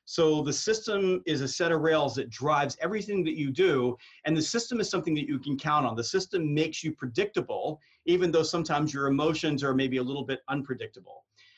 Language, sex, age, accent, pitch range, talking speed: English, male, 40-59, American, 140-180 Hz, 205 wpm